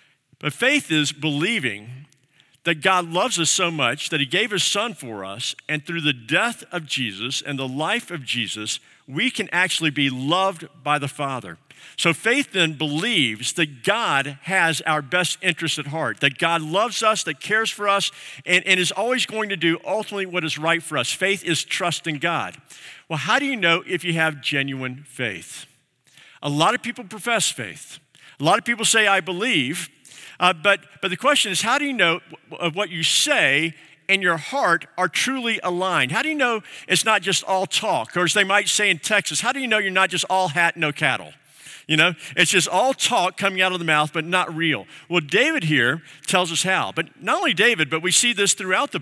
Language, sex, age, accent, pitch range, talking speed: English, male, 50-69, American, 150-195 Hz, 215 wpm